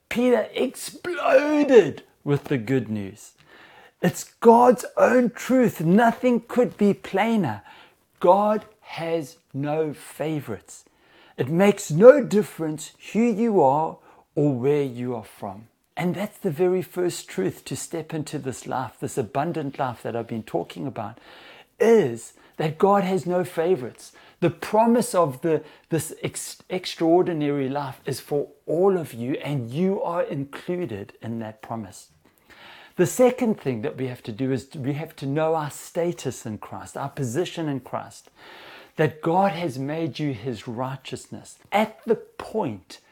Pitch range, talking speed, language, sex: 135-195 Hz, 145 wpm, English, male